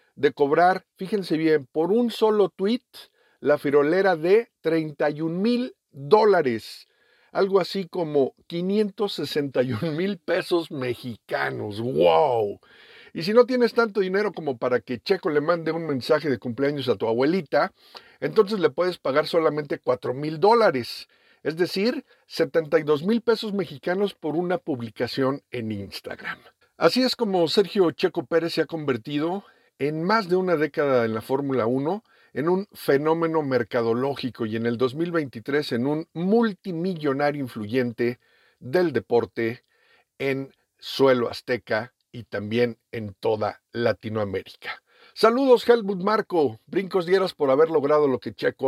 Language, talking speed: Spanish, 135 wpm